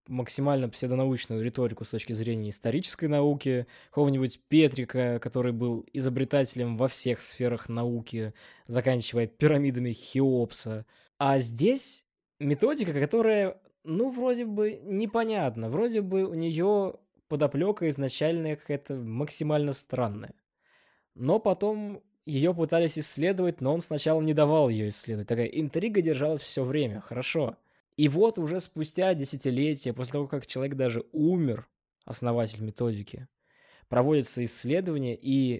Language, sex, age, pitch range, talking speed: Russian, male, 20-39, 125-160 Hz, 120 wpm